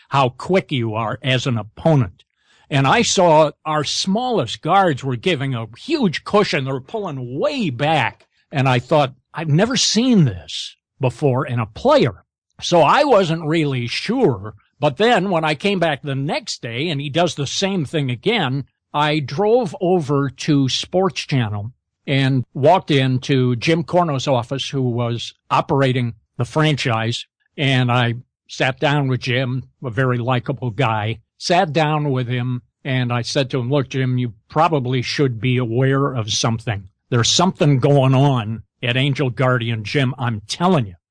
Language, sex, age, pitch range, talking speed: English, male, 60-79, 125-170 Hz, 160 wpm